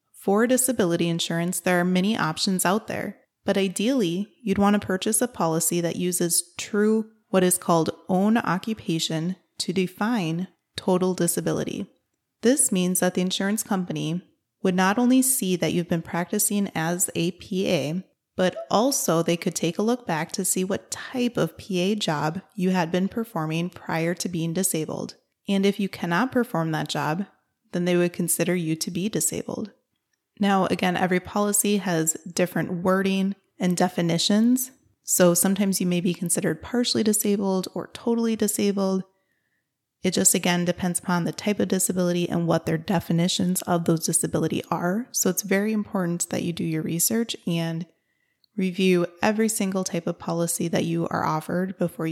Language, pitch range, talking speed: English, 170-205 Hz, 165 wpm